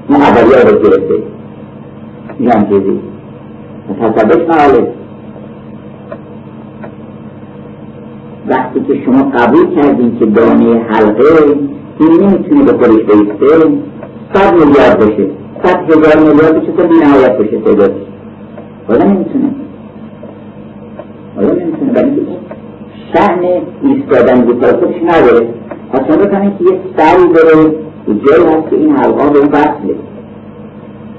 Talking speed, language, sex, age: 40 wpm, Persian, male, 50-69